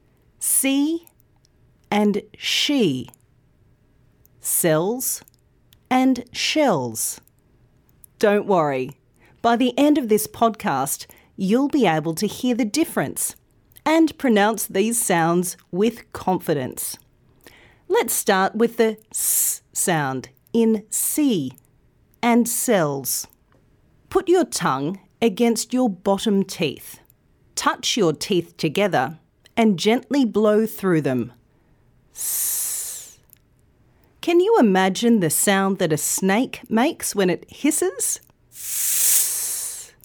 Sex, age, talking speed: female, 40-59, 100 wpm